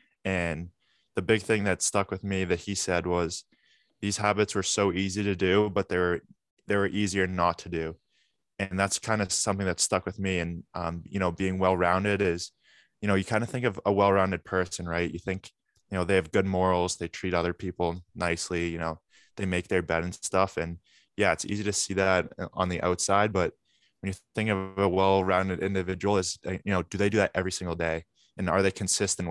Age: 20-39